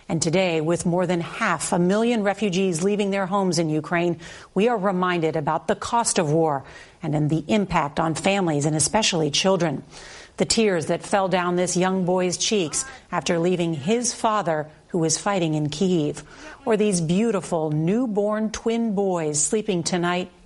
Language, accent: English, American